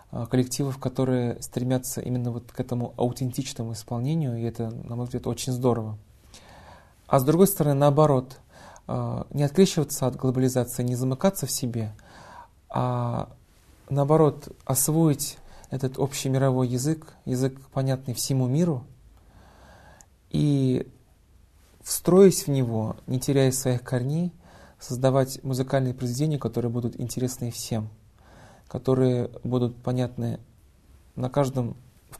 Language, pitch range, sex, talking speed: Russian, 115-135 Hz, male, 110 wpm